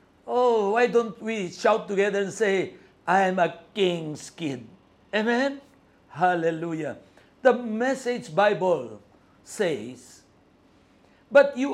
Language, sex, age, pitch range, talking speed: Filipino, male, 50-69, 190-235 Hz, 100 wpm